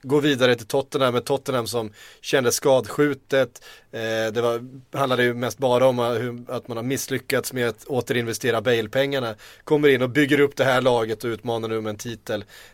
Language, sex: Swedish, male